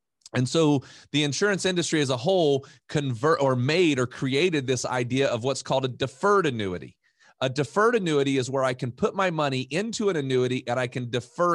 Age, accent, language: 40-59, American, English